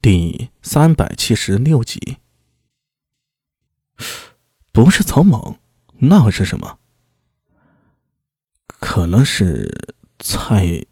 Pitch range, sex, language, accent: 110-160 Hz, male, Chinese, native